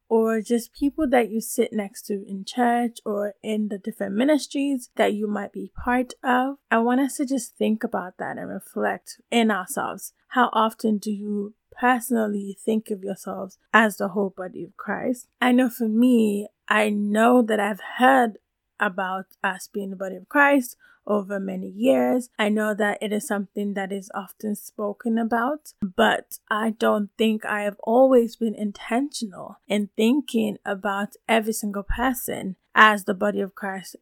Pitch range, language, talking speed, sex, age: 205-230 Hz, English, 170 wpm, female, 20-39